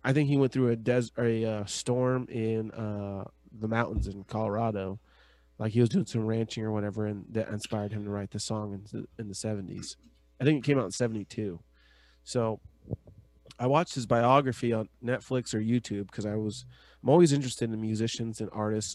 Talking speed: 195 wpm